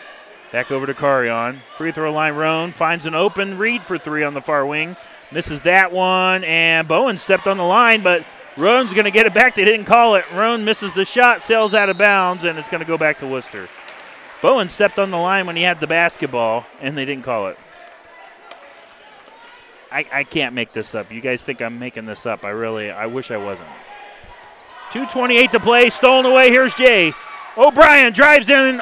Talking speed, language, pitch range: 200 wpm, English, 150-220 Hz